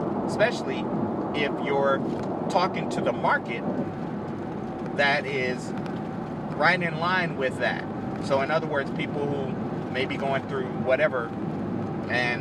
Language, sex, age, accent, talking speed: English, male, 30-49, American, 125 wpm